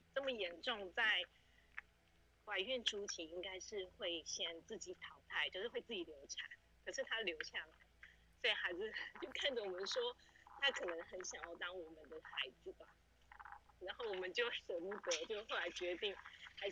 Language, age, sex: Chinese, 30-49, female